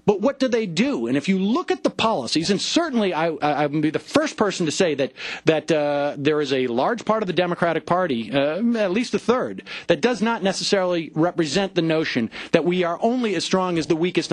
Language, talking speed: English, 235 wpm